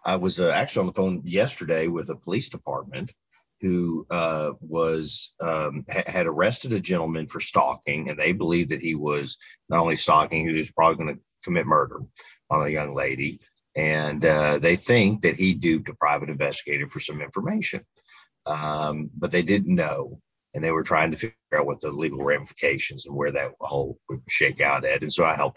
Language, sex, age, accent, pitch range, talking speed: English, male, 50-69, American, 75-95 Hz, 195 wpm